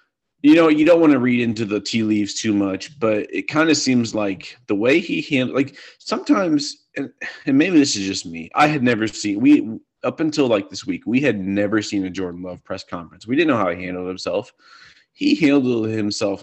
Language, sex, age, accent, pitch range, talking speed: English, male, 30-49, American, 105-150 Hz, 225 wpm